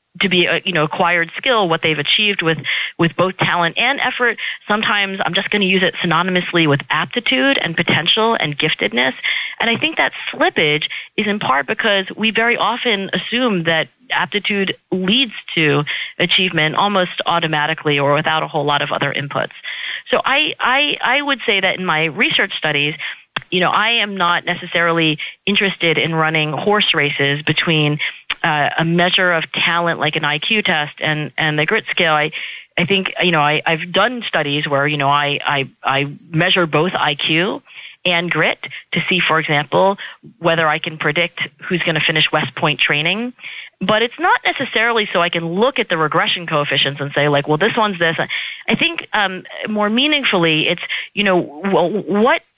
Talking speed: 185 wpm